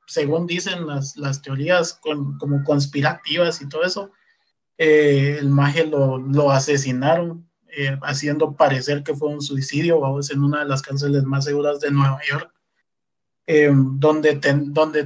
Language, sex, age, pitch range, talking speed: Spanish, male, 30-49, 140-160 Hz, 155 wpm